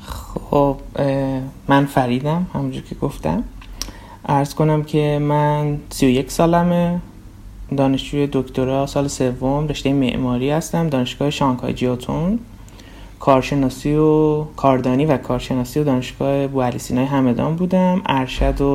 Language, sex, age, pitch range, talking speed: Persian, male, 30-49, 125-155 Hz, 110 wpm